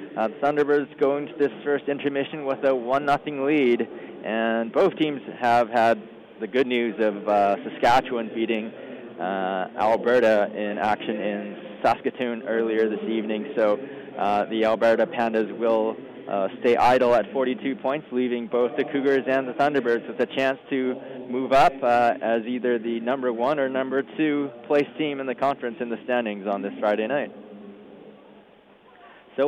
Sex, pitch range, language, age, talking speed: male, 115-140 Hz, English, 20-39, 165 wpm